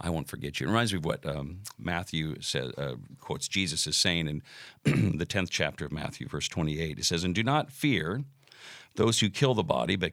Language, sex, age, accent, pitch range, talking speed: English, male, 50-69, American, 85-115 Hz, 215 wpm